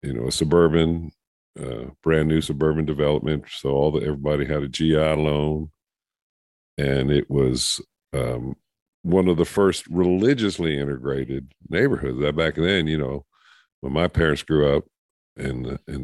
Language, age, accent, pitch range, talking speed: English, 50-69, American, 70-80 Hz, 145 wpm